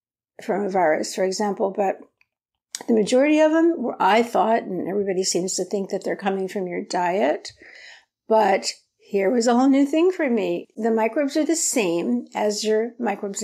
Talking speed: 185 wpm